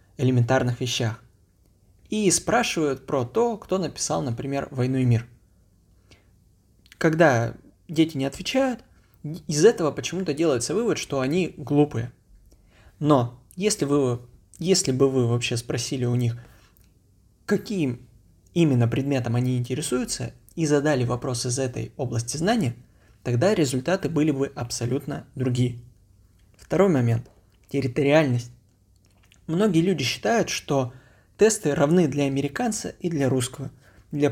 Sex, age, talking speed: male, 20-39, 115 wpm